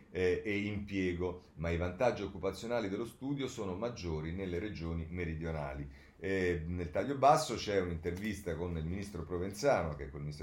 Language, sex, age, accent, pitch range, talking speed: Italian, male, 40-59, native, 80-105 Hz, 150 wpm